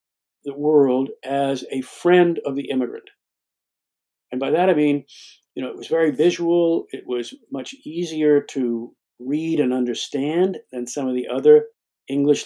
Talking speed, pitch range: 160 wpm, 135-200 Hz